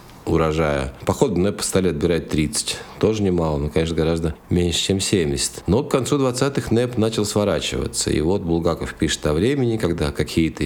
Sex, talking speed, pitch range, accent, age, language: male, 170 wpm, 80-100 Hz, native, 50-69, Russian